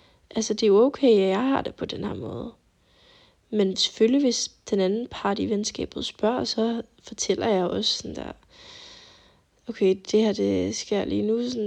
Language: Danish